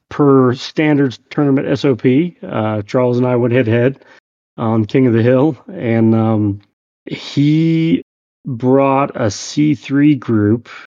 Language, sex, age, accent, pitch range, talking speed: English, male, 30-49, American, 110-130 Hz, 125 wpm